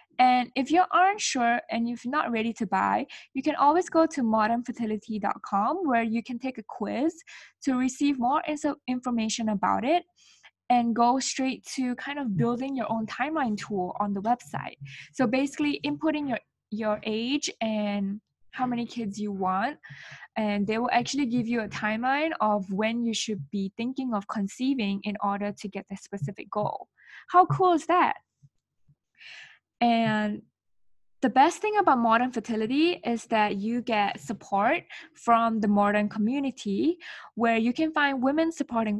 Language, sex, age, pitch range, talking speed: English, female, 10-29, 210-270 Hz, 160 wpm